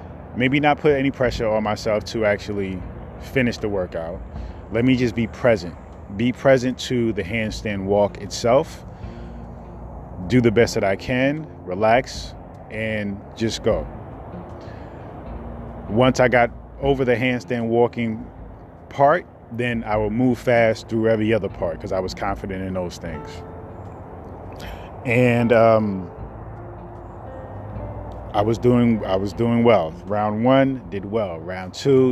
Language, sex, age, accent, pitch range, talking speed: English, male, 30-49, American, 90-120 Hz, 135 wpm